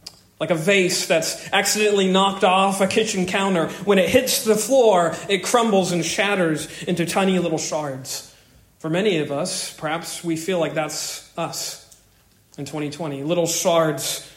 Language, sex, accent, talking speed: English, male, American, 155 wpm